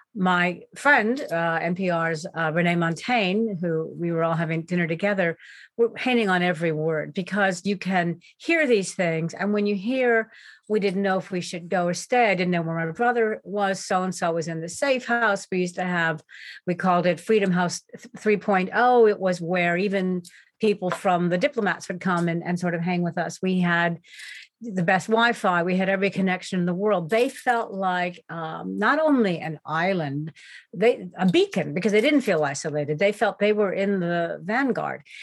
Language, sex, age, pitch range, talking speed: English, female, 50-69, 170-210 Hz, 190 wpm